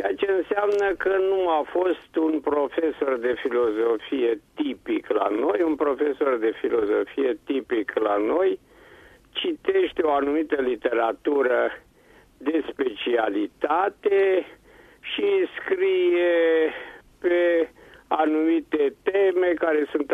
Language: Romanian